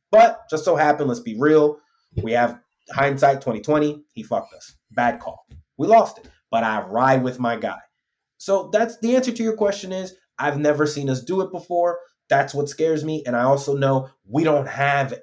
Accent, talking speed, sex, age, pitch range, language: American, 200 wpm, male, 30-49, 115-155 Hz, English